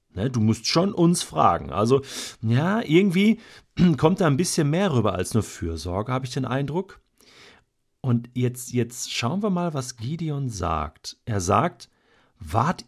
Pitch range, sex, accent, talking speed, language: 100-140 Hz, male, German, 155 wpm, German